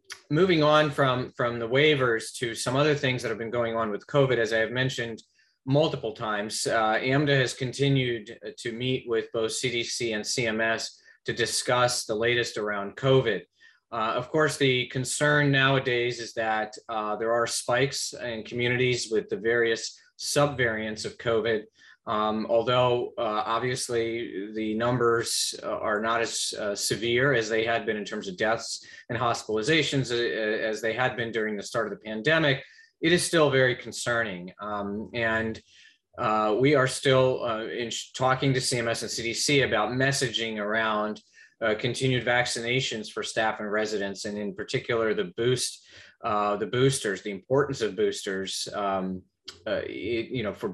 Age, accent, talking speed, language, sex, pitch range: 20-39, American, 165 wpm, English, male, 110-130 Hz